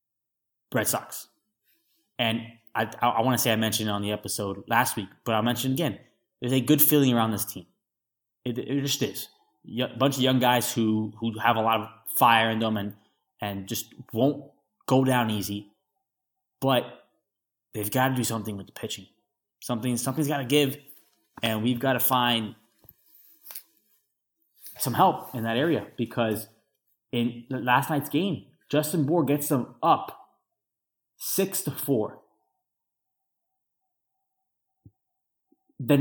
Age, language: 20-39, English